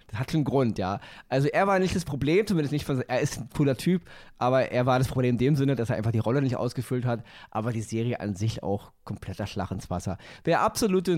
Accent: German